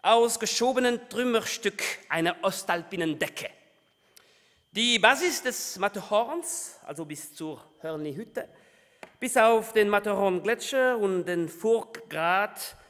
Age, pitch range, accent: 40-59, 165-245 Hz, German